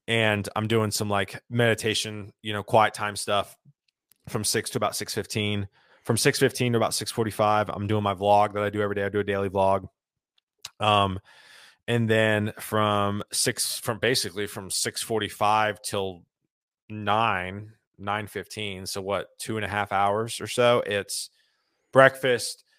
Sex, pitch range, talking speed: male, 100-110 Hz, 155 wpm